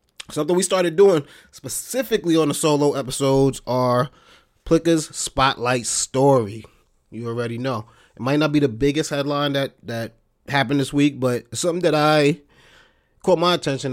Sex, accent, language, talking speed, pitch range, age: male, American, English, 155 wpm, 115-145 Hz, 20-39